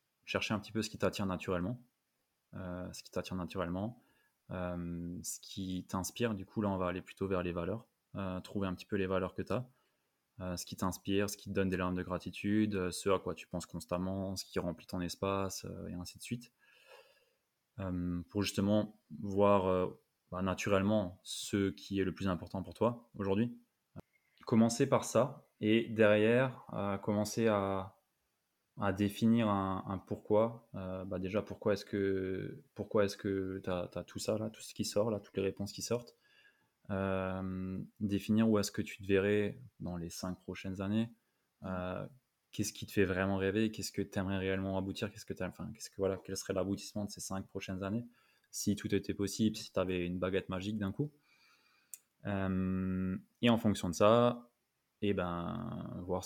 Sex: male